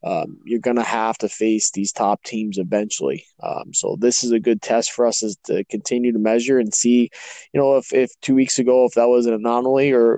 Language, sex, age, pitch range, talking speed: English, male, 20-39, 105-120 Hz, 235 wpm